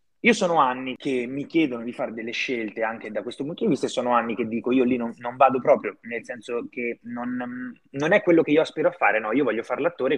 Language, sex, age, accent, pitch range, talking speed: Italian, male, 20-39, native, 115-155 Hz, 260 wpm